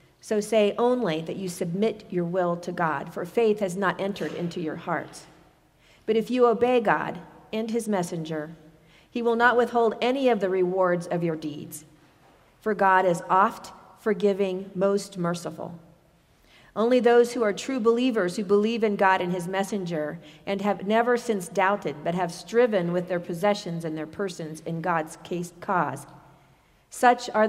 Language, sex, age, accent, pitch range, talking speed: English, female, 40-59, American, 170-220 Hz, 165 wpm